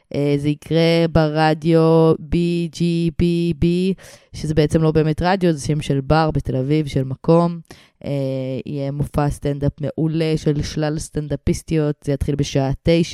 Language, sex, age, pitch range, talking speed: Hebrew, female, 20-39, 145-170 Hz, 135 wpm